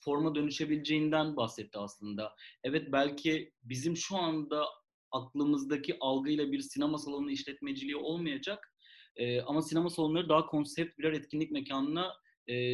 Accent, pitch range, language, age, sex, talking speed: native, 130-165 Hz, Turkish, 30-49, male, 120 wpm